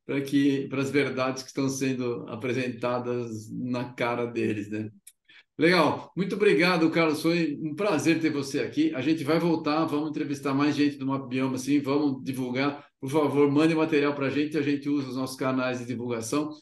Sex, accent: male, Brazilian